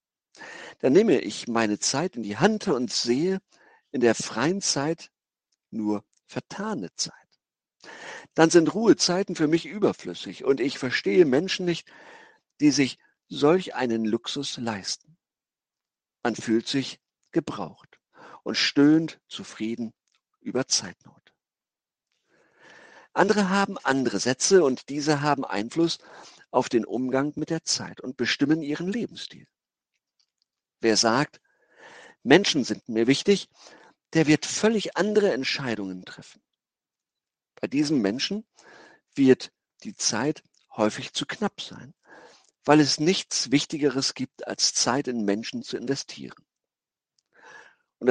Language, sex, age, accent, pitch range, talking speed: German, male, 50-69, German, 120-180 Hz, 120 wpm